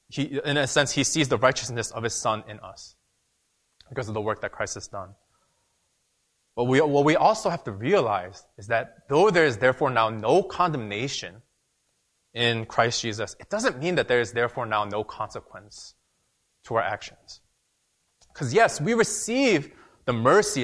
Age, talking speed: 20-39, 170 wpm